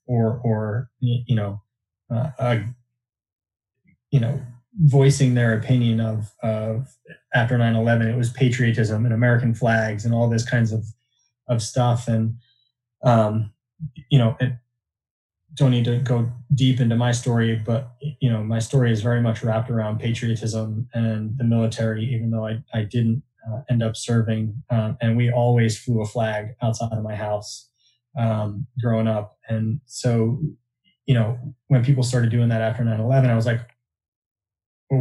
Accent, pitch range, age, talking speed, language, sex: American, 110-130 Hz, 20-39, 165 wpm, English, male